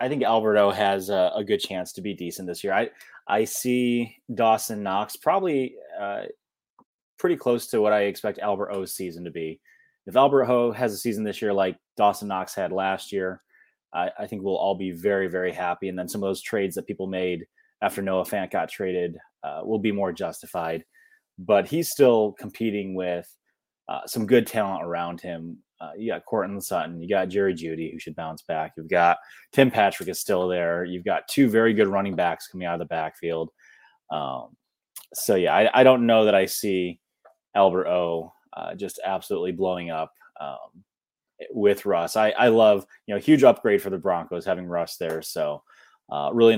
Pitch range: 85-110 Hz